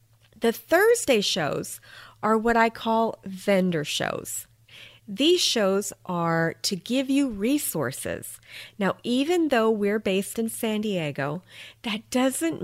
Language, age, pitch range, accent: English, 40-59, 180-245 Hz, American